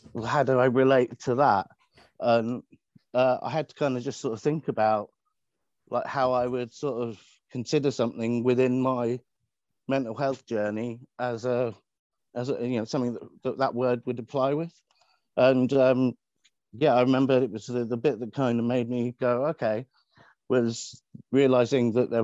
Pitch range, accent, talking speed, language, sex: 115-130 Hz, British, 180 wpm, English, male